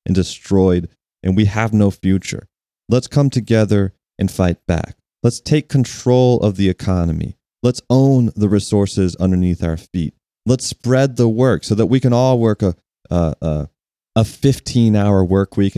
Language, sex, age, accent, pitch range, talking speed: English, male, 30-49, American, 95-125 Hz, 160 wpm